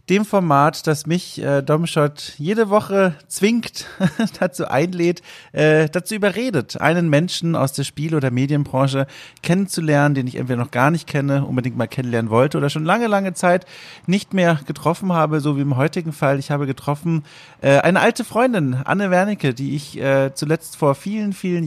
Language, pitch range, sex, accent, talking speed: German, 130-165 Hz, male, German, 170 wpm